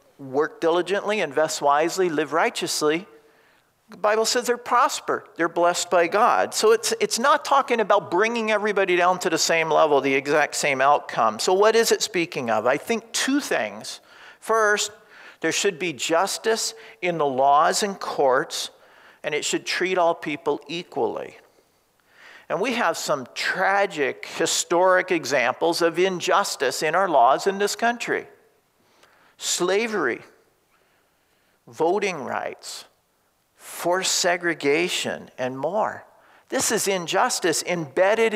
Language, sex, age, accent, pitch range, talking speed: English, male, 50-69, American, 170-225 Hz, 135 wpm